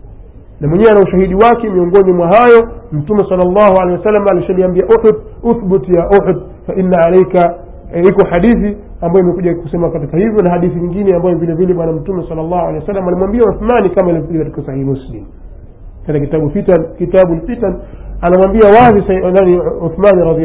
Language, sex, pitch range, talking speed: Swahili, male, 150-210 Hz, 150 wpm